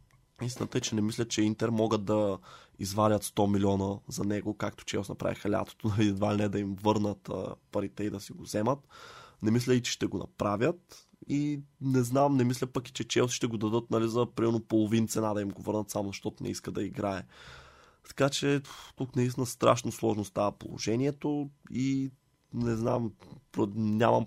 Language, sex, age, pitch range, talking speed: Bulgarian, male, 20-39, 105-125 Hz, 190 wpm